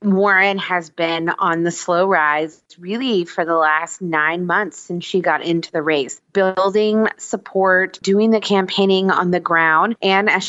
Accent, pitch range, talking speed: American, 175-230 Hz, 165 wpm